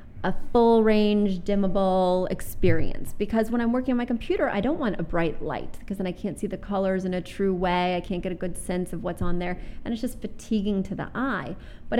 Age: 30-49